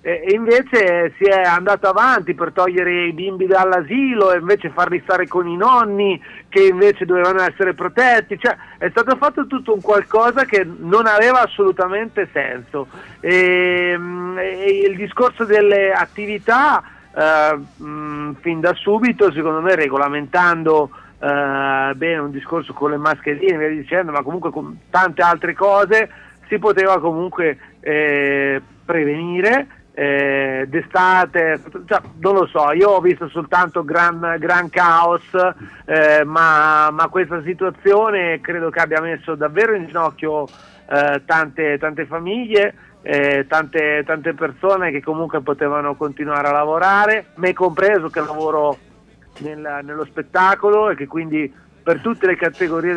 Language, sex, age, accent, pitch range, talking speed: Italian, male, 40-59, native, 155-195 Hz, 135 wpm